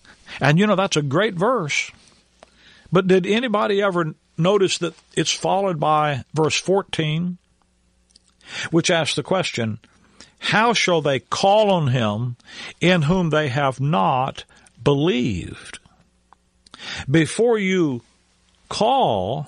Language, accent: English, American